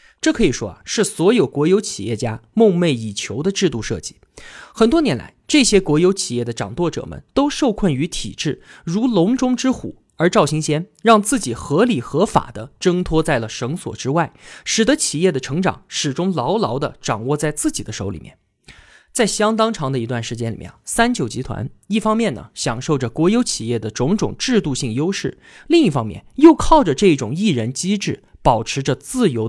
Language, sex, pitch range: Chinese, male, 130-210 Hz